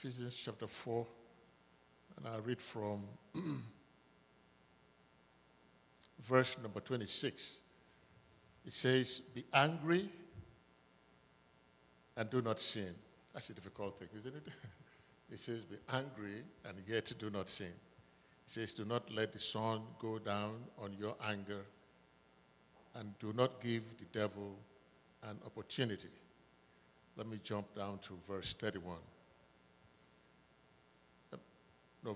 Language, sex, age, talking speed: English, male, 60-79, 115 wpm